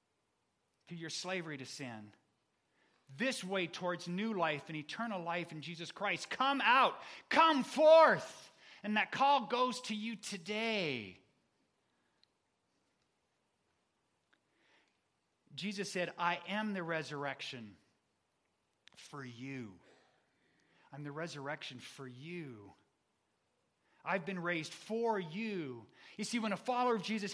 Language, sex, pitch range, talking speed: English, male, 160-220 Hz, 115 wpm